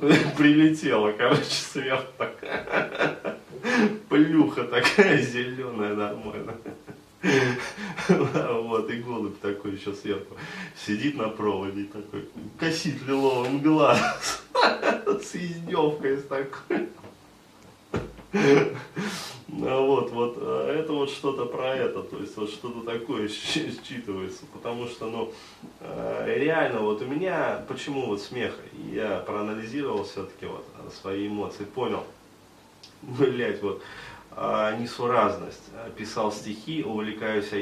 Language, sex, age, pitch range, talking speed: Russian, male, 20-39, 105-145 Hz, 95 wpm